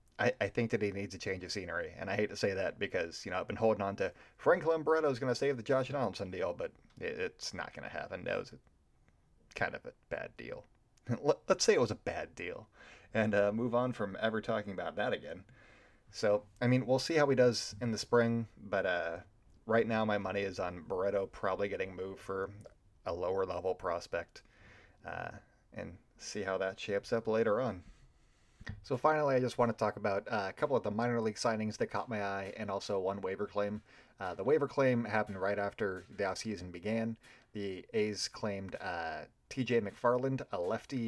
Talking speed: 205 wpm